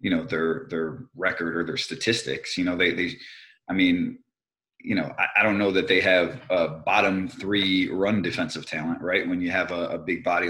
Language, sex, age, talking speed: English, male, 30-49, 210 wpm